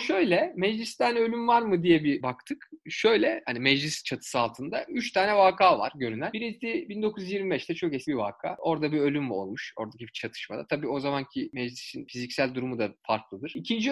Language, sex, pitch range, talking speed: Turkish, male, 145-205 Hz, 170 wpm